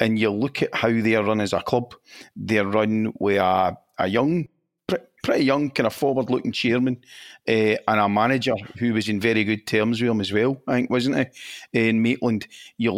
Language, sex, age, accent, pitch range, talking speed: English, male, 40-59, British, 110-125 Hz, 205 wpm